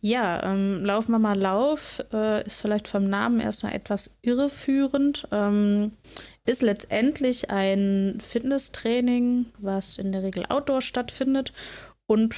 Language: German